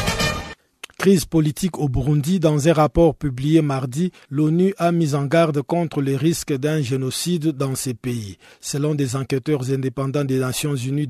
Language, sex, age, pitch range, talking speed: French, male, 50-69, 135-165 Hz, 155 wpm